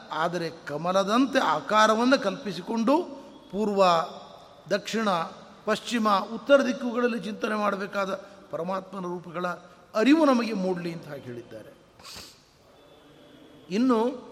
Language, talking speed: Kannada, 85 wpm